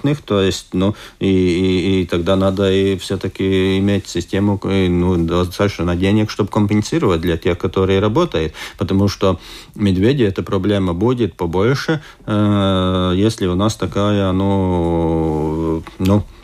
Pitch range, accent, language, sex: 95-120 Hz, native, Russian, male